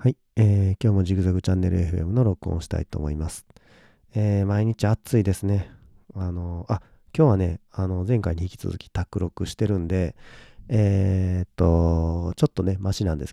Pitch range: 85-105 Hz